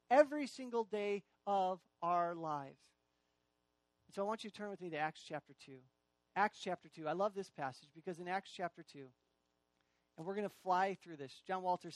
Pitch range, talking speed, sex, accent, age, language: 150-210 Hz, 195 wpm, male, American, 40-59, English